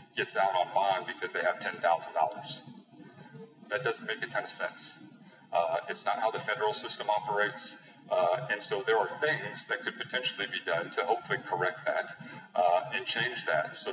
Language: English